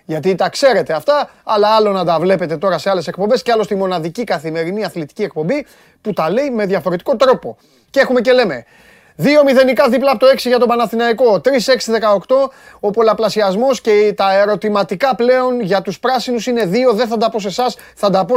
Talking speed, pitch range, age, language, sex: 195 wpm, 190-245 Hz, 30-49, Greek, male